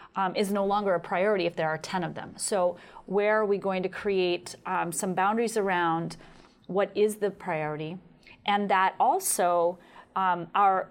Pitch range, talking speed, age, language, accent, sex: 170-200 Hz, 170 wpm, 30-49, English, American, female